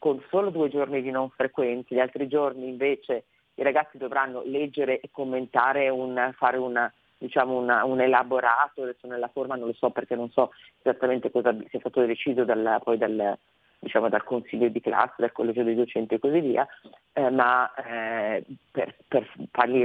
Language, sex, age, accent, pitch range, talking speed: Italian, female, 30-49, native, 115-135 Hz, 180 wpm